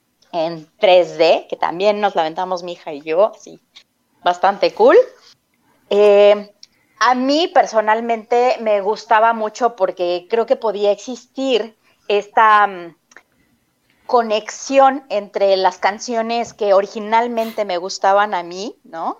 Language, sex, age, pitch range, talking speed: Spanish, female, 30-49, 190-235 Hz, 120 wpm